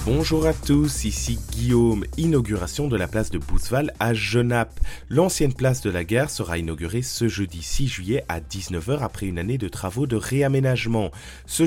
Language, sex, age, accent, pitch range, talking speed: French, male, 30-49, French, 80-120 Hz, 175 wpm